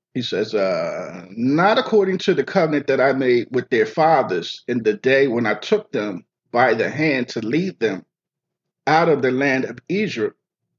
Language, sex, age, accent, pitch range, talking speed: English, male, 50-69, American, 130-200 Hz, 185 wpm